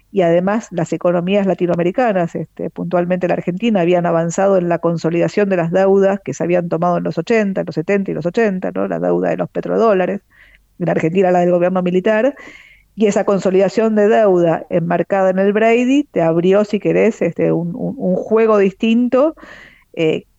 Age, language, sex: 50-69, Spanish, female